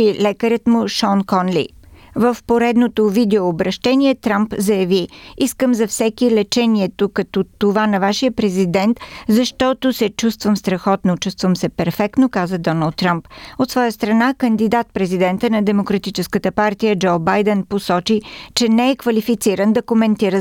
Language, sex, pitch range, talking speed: Bulgarian, female, 195-230 Hz, 130 wpm